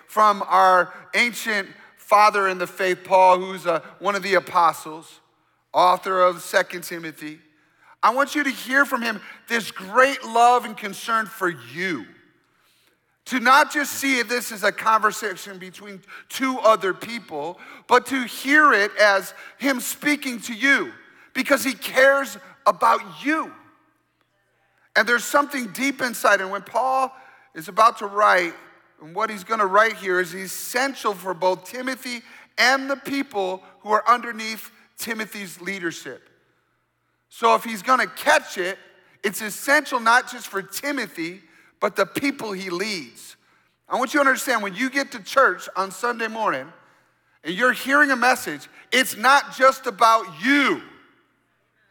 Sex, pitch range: male, 190-265 Hz